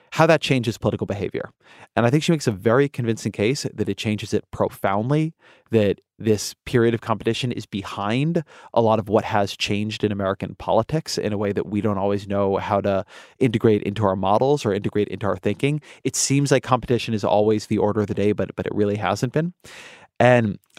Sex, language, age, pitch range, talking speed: male, English, 30-49, 100-120 Hz, 210 wpm